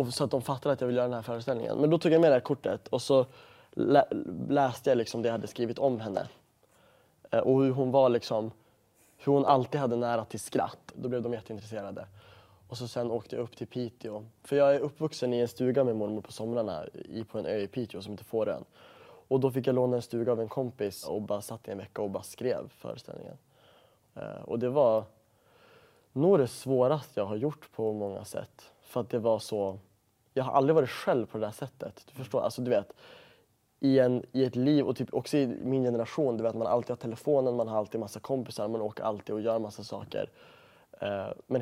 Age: 20-39